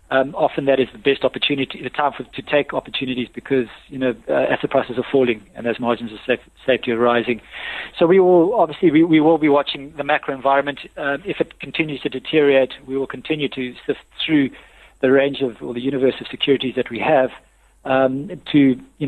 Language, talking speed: English, 210 wpm